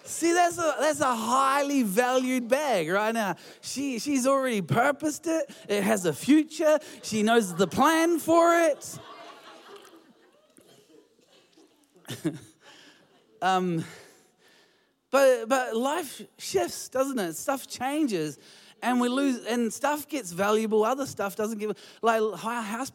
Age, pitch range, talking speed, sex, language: 20-39, 180-260 Hz, 125 wpm, male, English